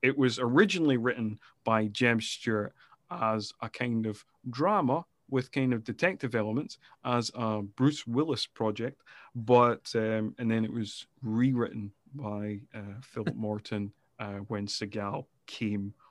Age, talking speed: 30-49, 140 wpm